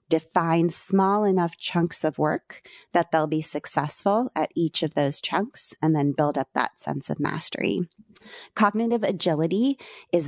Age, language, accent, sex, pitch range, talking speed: 30-49, English, American, female, 150-190 Hz, 150 wpm